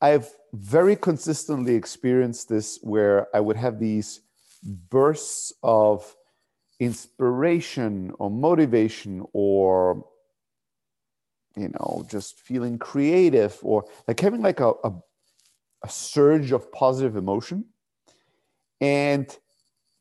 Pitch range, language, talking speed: 115-155 Hz, English, 100 wpm